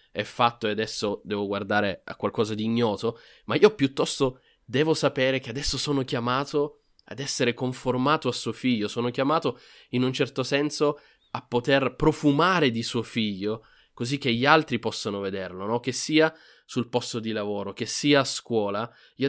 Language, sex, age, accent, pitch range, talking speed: Italian, male, 20-39, native, 115-145 Hz, 170 wpm